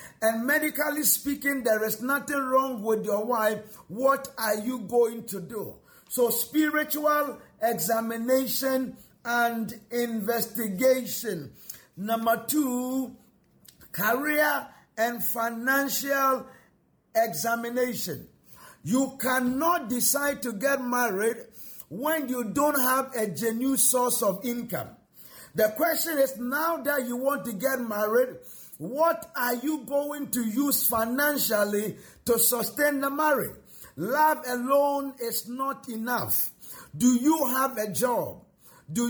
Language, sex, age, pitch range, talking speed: English, male, 50-69, 230-280 Hz, 115 wpm